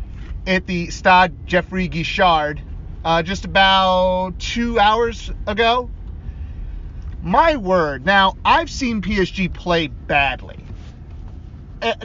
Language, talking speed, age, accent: English, 100 wpm, 30-49, American